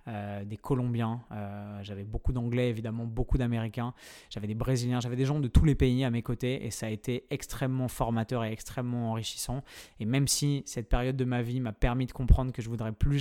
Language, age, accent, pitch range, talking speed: French, 20-39, French, 115-130 Hz, 220 wpm